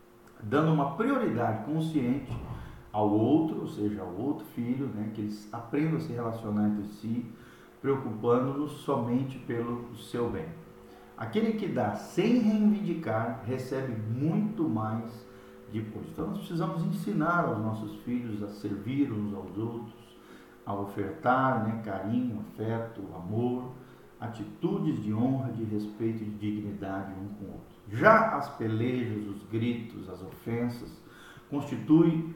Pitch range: 115-155 Hz